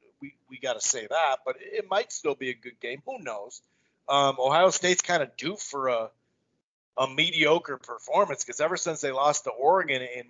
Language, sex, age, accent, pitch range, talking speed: English, male, 40-59, American, 130-170 Hz, 205 wpm